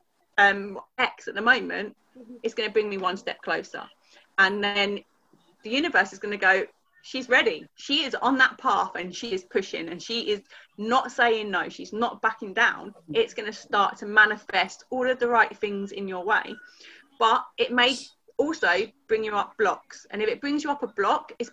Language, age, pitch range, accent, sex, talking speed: English, 30-49, 200-255 Hz, British, female, 205 wpm